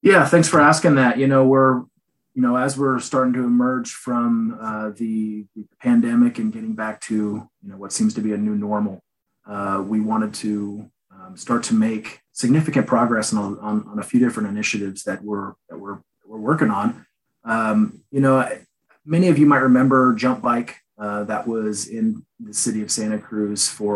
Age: 30-49